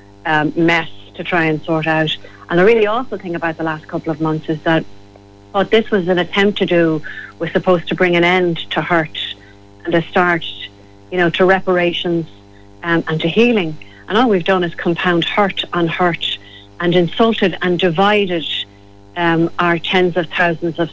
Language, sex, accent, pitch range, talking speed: English, female, Irish, 160-185 Hz, 185 wpm